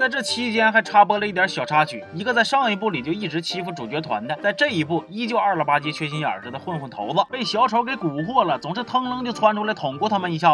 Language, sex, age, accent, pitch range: Chinese, male, 20-39, native, 155-225 Hz